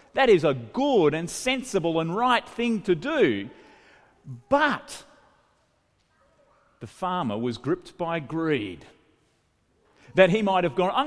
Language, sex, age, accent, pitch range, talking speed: English, male, 40-59, Australian, 150-225 Hz, 130 wpm